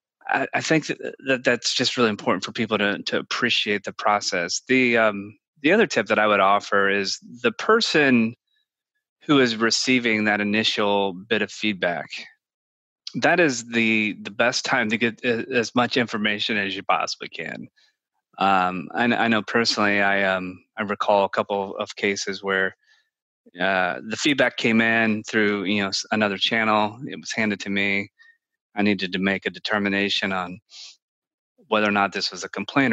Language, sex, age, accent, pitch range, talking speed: English, male, 30-49, American, 100-120 Hz, 170 wpm